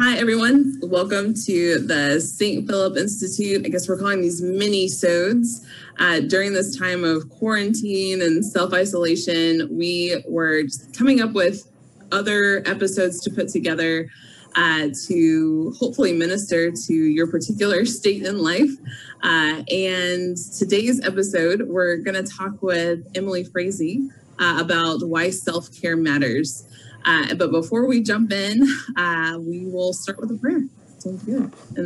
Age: 20-39